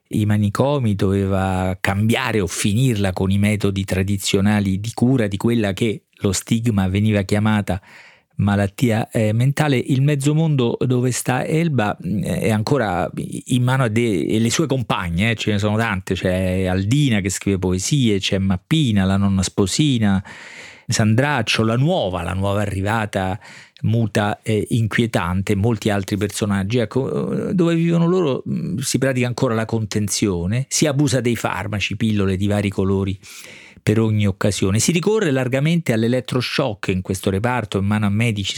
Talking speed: 150 wpm